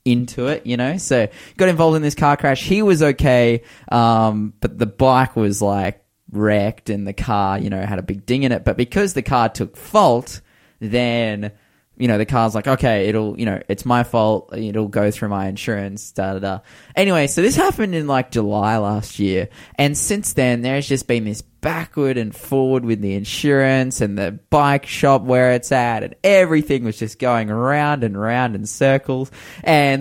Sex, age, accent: male, 20-39, Australian